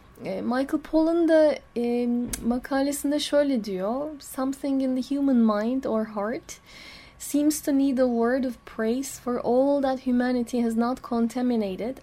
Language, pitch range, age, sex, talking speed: Turkish, 225-260 Hz, 10-29, female, 140 wpm